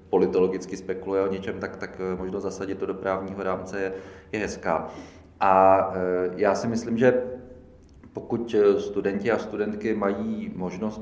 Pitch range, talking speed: 95-110 Hz, 140 wpm